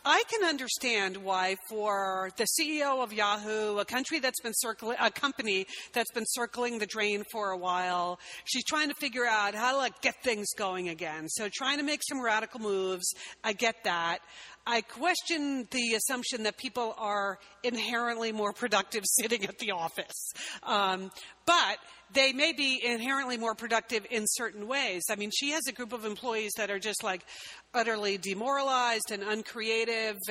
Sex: female